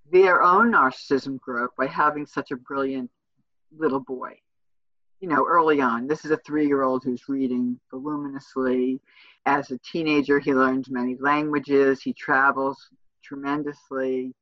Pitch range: 135-165 Hz